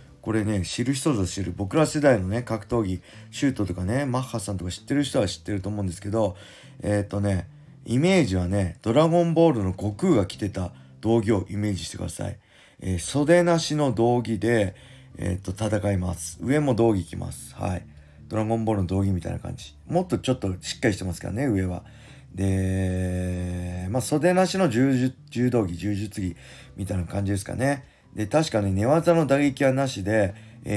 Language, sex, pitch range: Japanese, male, 95-135 Hz